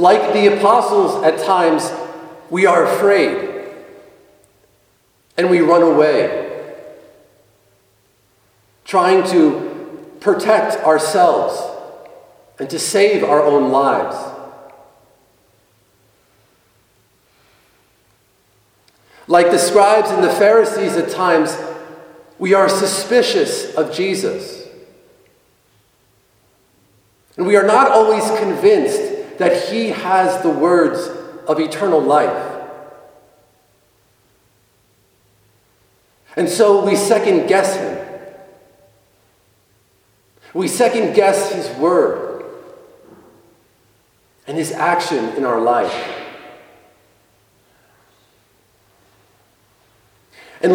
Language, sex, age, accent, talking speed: English, male, 50-69, American, 80 wpm